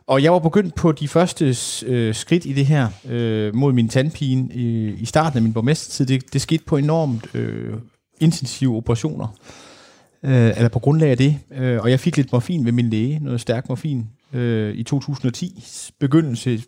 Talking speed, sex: 185 wpm, male